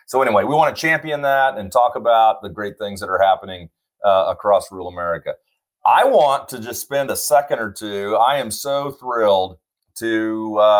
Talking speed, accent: 190 wpm, American